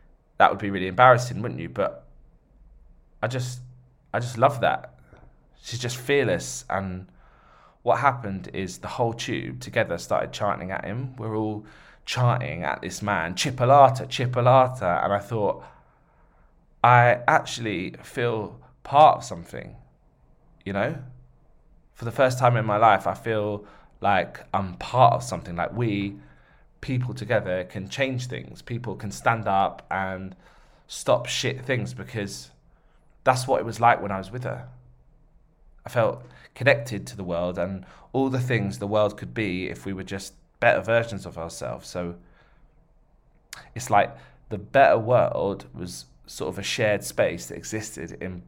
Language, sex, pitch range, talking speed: English, male, 90-120 Hz, 155 wpm